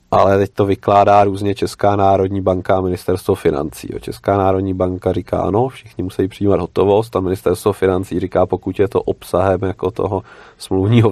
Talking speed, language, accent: 165 wpm, Czech, native